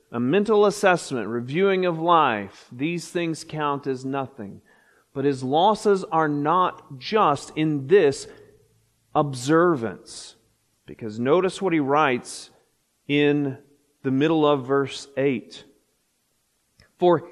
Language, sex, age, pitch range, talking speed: English, male, 40-59, 150-225 Hz, 110 wpm